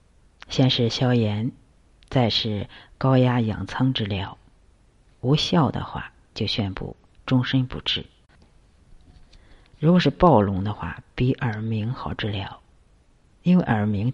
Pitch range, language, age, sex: 105-135 Hz, Chinese, 50-69, female